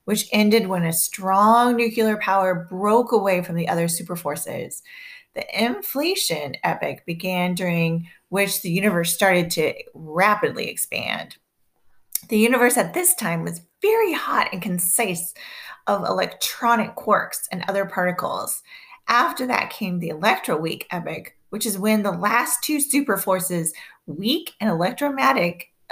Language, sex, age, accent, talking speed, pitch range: English, female, 30-49, American, 135 wpm, 175-230 Hz